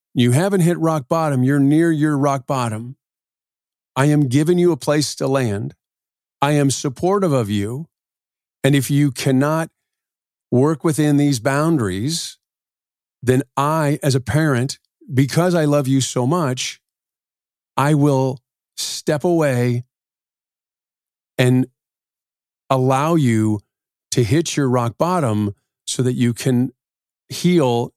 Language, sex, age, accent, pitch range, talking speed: English, male, 40-59, American, 120-145 Hz, 125 wpm